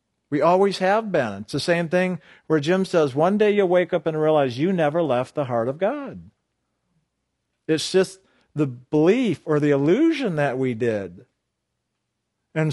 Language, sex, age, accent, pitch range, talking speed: English, male, 50-69, American, 140-205 Hz, 170 wpm